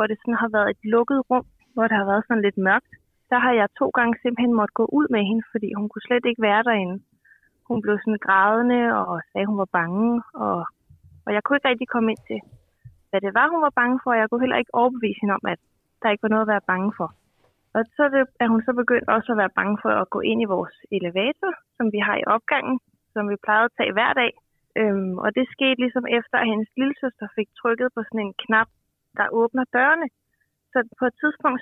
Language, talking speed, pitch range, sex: Danish, 235 wpm, 215-255 Hz, female